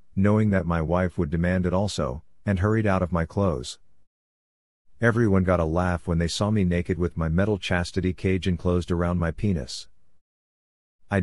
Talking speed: 175 wpm